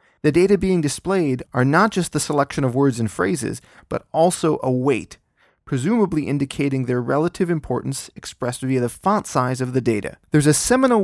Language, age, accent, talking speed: English, 30-49, American, 180 wpm